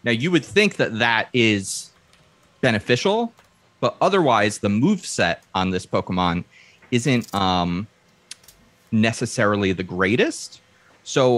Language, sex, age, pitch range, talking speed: English, male, 30-49, 100-125 Hz, 110 wpm